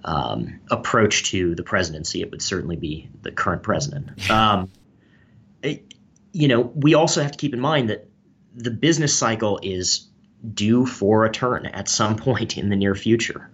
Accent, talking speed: American, 175 wpm